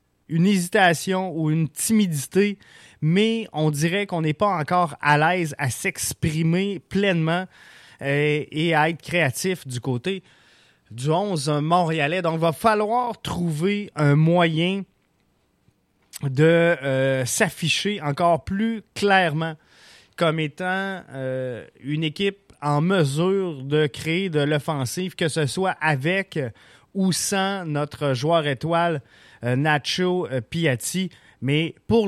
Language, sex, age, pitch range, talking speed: French, male, 20-39, 140-180 Hz, 120 wpm